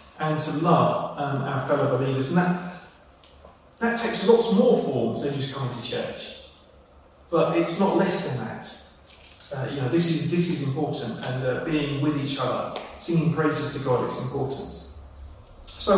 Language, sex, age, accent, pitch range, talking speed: English, male, 30-49, British, 130-160 Hz, 175 wpm